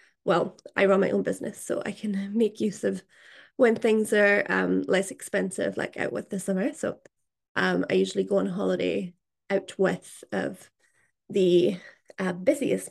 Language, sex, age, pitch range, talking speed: English, female, 20-39, 185-220 Hz, 165 wpm